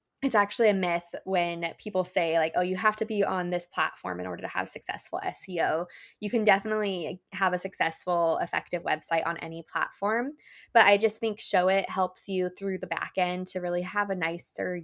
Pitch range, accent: 170-200 Hz, American